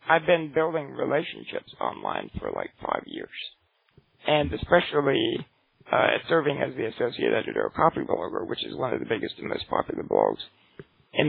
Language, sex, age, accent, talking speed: English, male, 60-79, American, 160 wpm